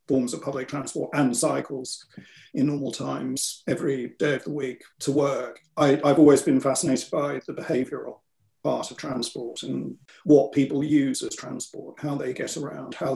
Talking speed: 175 wpm